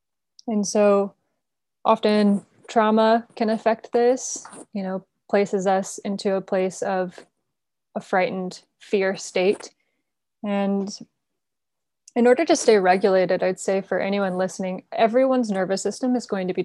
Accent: American